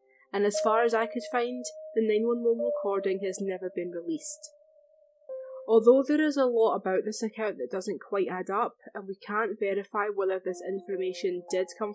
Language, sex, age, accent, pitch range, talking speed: English, female, 20-39, British, 200-255 Hz, 180 wpm